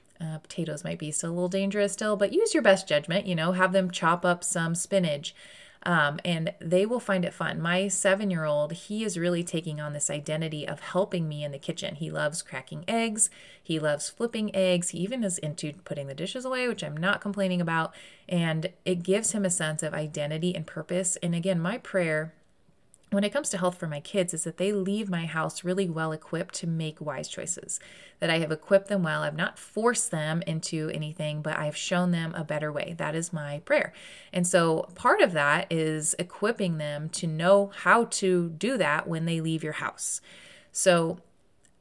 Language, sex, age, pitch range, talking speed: English, female, 30-49, 155-195 Hz, 210 wpm